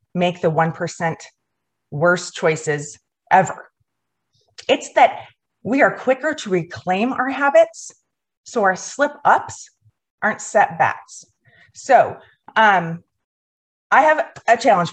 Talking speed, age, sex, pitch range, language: 110 wpm, 30-49, female, 165-230 Hz, English